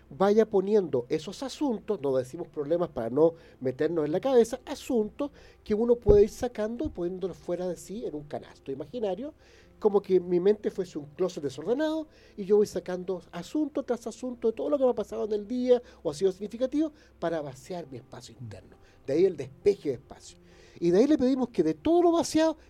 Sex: male